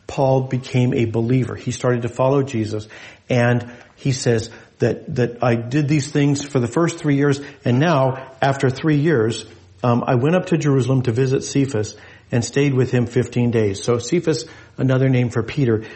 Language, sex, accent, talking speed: English, male, American, 185 wpm